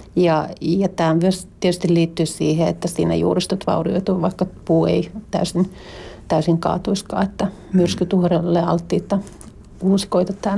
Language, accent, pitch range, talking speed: Finnish, native, 170-195 Hz, 125 wpm